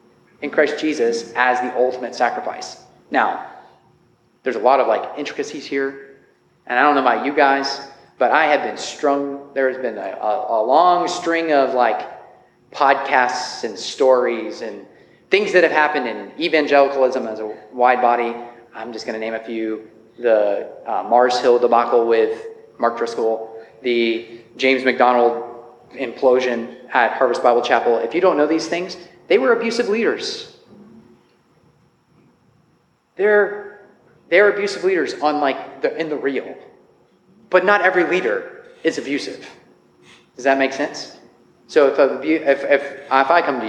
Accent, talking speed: American, 155 wpm